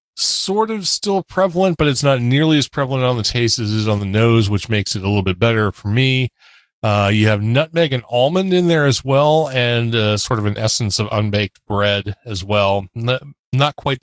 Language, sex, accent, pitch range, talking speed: English, male, American, 105-140 Hz, 220 wpm